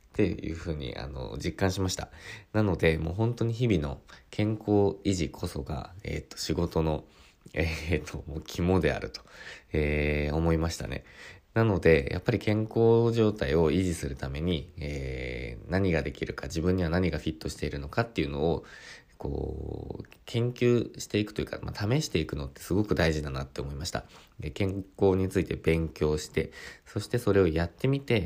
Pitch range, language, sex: 75-100 Hz, Japanese, male